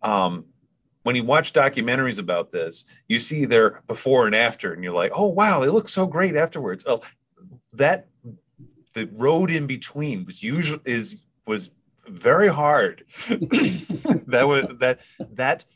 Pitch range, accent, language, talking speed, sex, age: 95-150 Hz, American, English, 150 wpm, male, 30-49